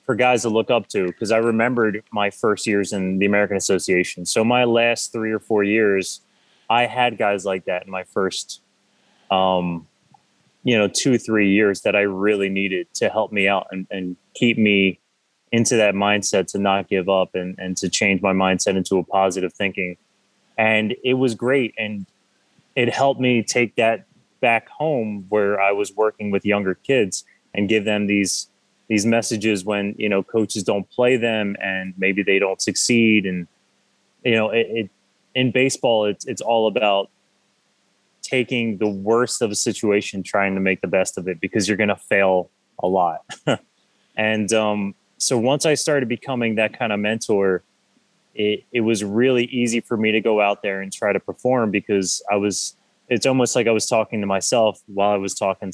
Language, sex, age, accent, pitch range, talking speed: English, male, 20-39, American, 95-115 Hz, 190 wpm